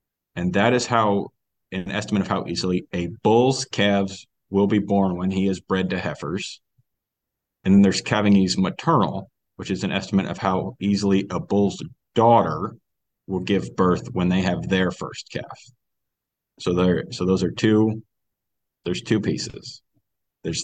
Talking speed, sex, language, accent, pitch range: 165 wpm, male, English, American, 90-100 Hz